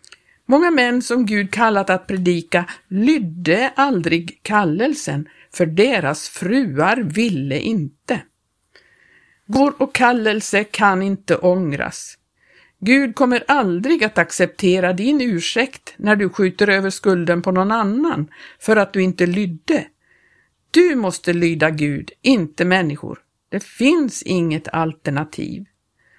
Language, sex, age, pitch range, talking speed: Swedish, female, 50-69, 175-250 Hz, 115 wpm